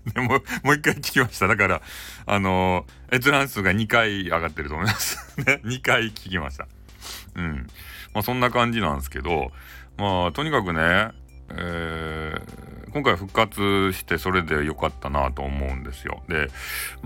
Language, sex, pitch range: Japanese, male, 80-135 Hz